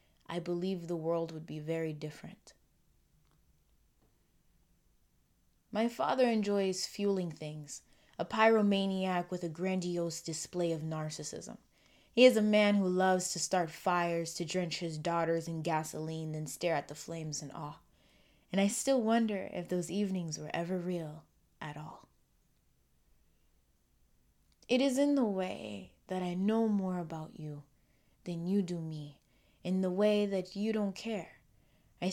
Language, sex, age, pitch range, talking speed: English, female, 20-39, 160-195 Hz, 145 wpm